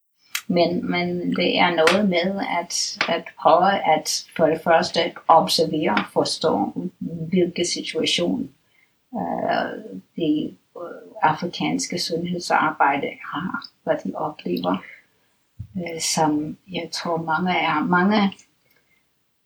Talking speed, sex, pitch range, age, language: 100 wpm, female, 160-195 Hz, 60-79, Danish